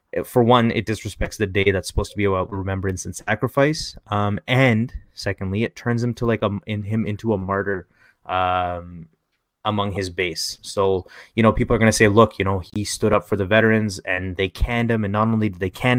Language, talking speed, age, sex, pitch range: English, 220 wpm, 20-39, male, 95-110 Hz